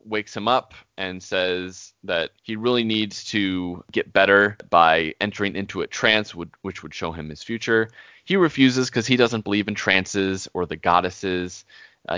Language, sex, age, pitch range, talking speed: English, male, 20-39, 90-115 Hz, 175 wpm